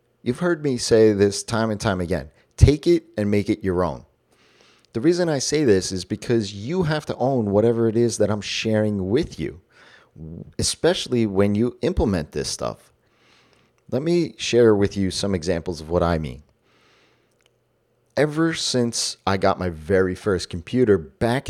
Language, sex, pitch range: English, male, 95-120 Hz